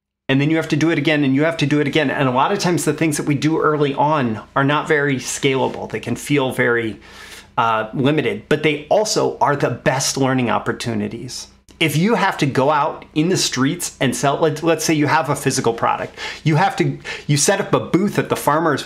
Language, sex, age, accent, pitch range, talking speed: English, male, 30-49, American, 130-155 Hz, 240 wpm